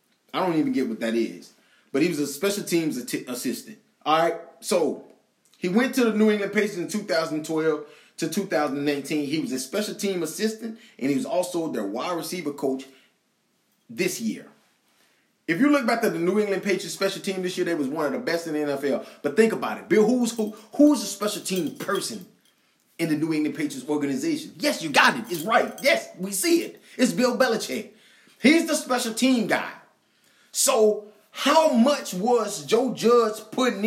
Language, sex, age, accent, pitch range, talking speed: English, male, 20-39, American, 180-260 Hz, 195 wpm